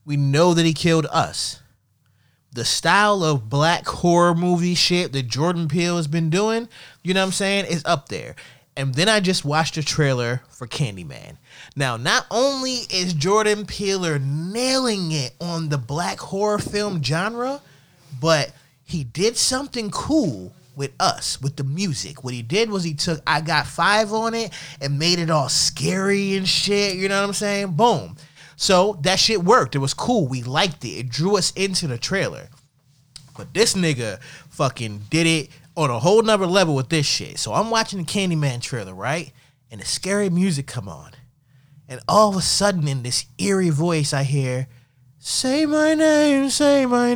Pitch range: 140-200 Hz